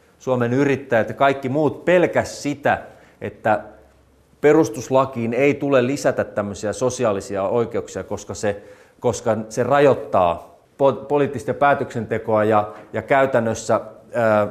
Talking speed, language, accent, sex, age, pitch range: 110 wpm, Finnish, native, male, 30-49, 110-140 Hz